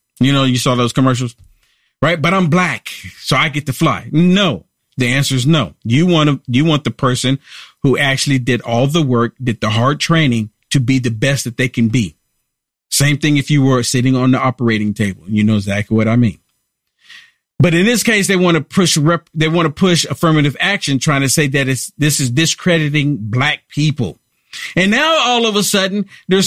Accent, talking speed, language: American, 210 wpm, English